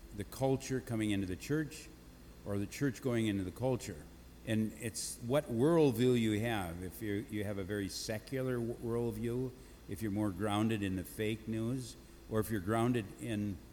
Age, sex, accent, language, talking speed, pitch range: 60-79, male, American, English, 175 wpm, 90-115 Hz